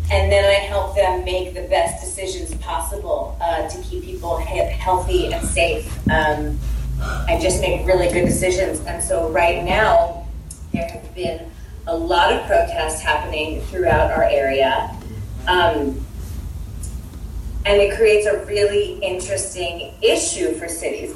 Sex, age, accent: female, 30-49, American